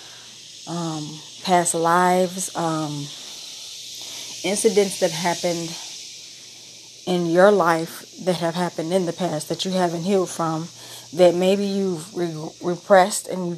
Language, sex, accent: English, female, American